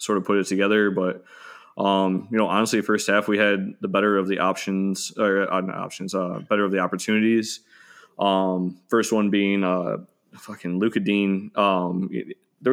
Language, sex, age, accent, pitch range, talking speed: English, male, 20-39, American, 95-100 Hz, 185 wpm